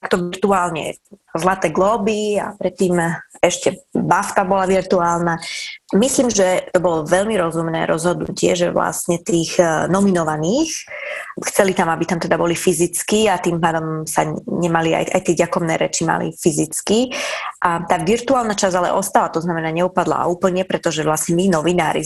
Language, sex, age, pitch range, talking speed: Slovak, female, 20-39, 175-220 Hz, 145 wpm